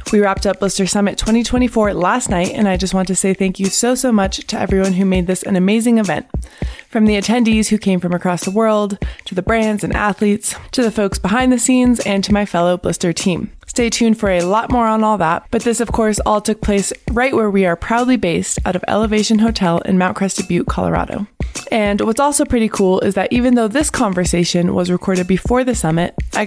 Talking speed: 230 wpm